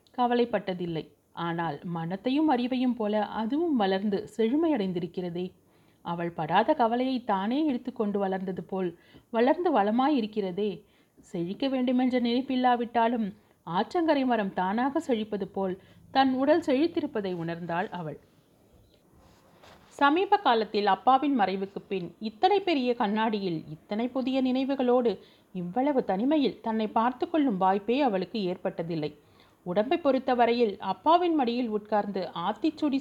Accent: native